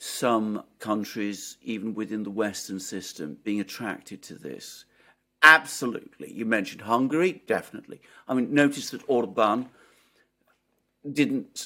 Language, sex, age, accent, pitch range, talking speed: English, male, 50-69, British, 120-185 Hz, 120 wpm